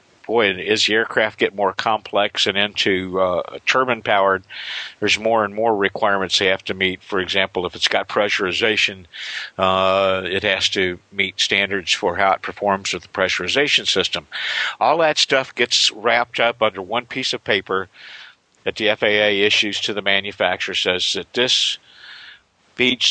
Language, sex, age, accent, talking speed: English, male, 50-69, American, 160 wpm